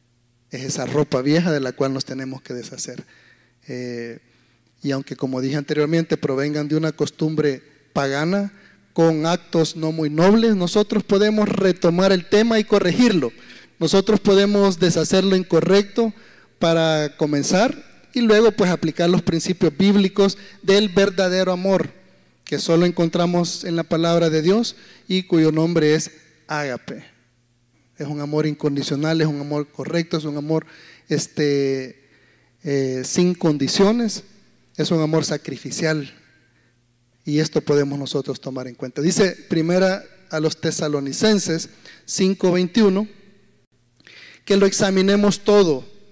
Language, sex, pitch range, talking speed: Spanish, male, 140-190 Hz, 130 wpm